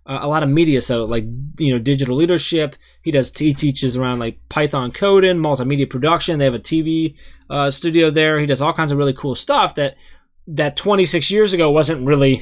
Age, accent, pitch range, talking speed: 20-39, American, 125-155 Hz, 210 wpm